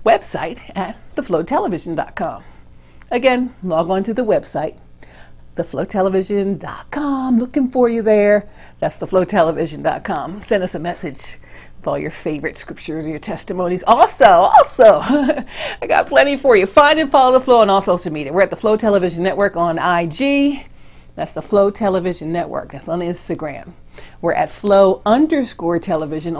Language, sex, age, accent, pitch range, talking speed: English, female, 50-69, American, 170-230 Hz, 150 wpm